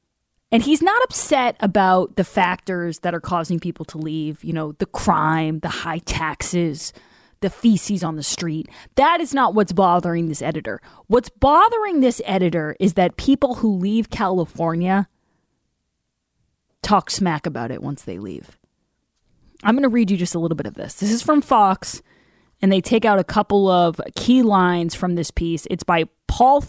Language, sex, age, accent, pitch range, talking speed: English, female, 20-39, American, 170-235 Hz, 180 wpm